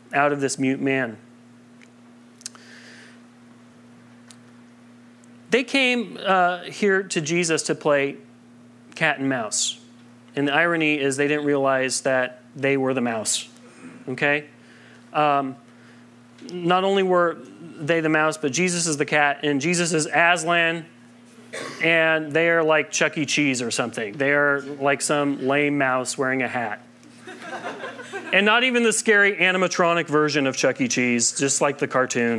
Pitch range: 125-190 Hz